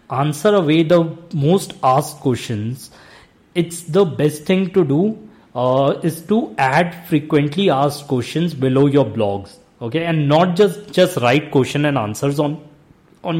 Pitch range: 140-185 Hz